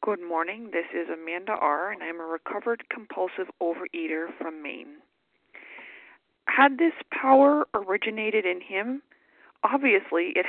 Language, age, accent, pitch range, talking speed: English, 40-59, American, 195-310 Hz, 125 wpm